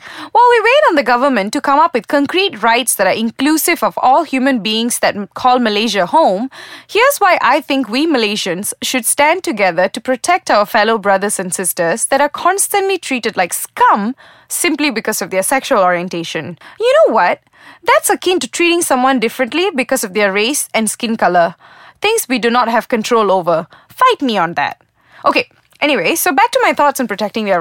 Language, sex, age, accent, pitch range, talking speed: English, female, 20-39, Indian, 220-315 Hz, 190 wpm